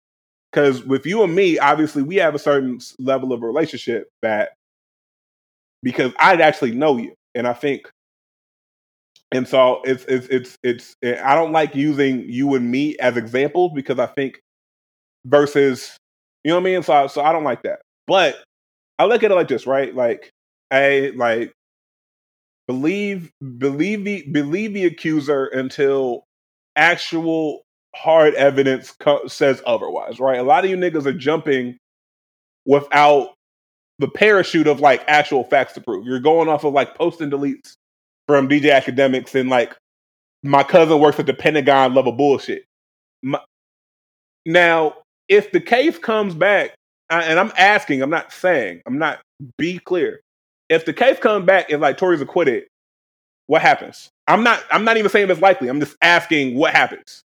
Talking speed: 160 wpm